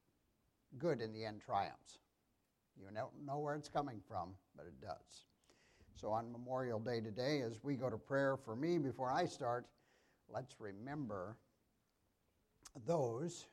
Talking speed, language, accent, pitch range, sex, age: 145 wpm, English, American, 115-155 Hz, male, 60-79